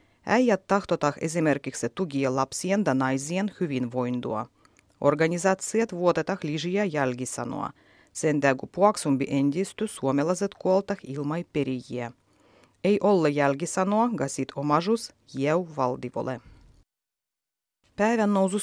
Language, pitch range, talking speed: Finnish, 140-210 Hz, 95 wpm